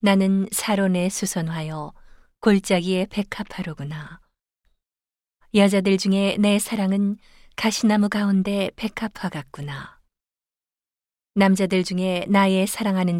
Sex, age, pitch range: female, 40-59, 165-200 Hz